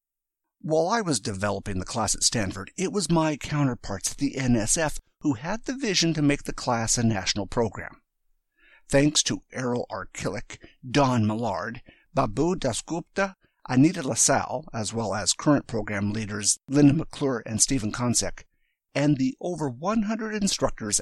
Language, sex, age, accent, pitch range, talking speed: English, male, 50-69, American, 110-155 Hz, 150 wpm